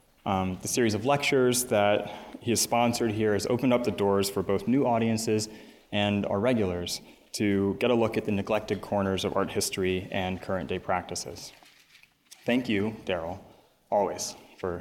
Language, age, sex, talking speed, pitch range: English, 20-39, male, 170 wpm, 100-120 Hz